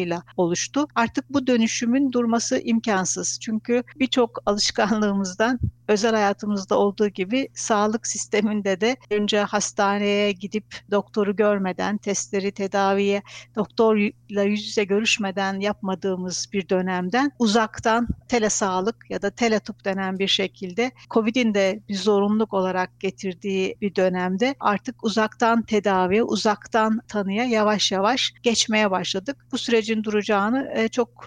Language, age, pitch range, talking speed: Turkish, 60-79, 200-230 Hz, 115 wpm